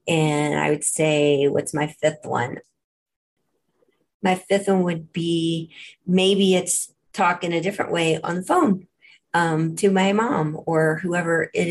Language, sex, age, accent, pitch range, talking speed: English, female, 30-49, American, 160-200 Hz, 155 wpm